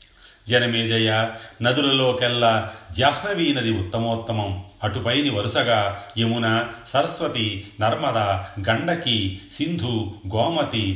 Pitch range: 105-125 Hz